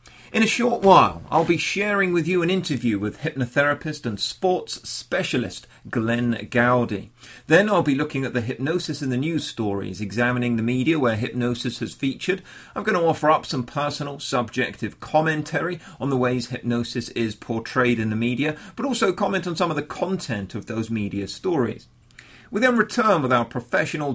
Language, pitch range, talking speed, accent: English, 120-155 Hz, 180 wpm, British